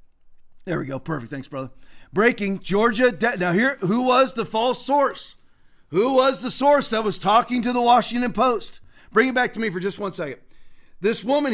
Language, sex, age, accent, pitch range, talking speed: English, male, 40-59, American, 200-280 Hz, 200 wpm